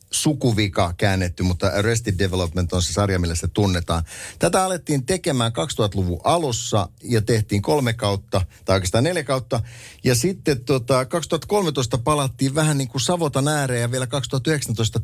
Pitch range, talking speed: 95-125 Hz, 140 wpm